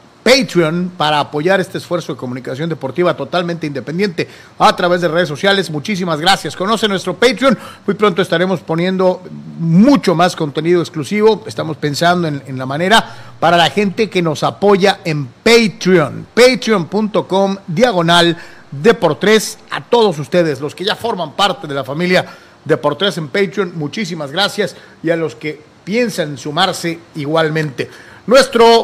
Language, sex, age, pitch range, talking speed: Spanish, male, 40-59, 160-210 Hz, 145 wpm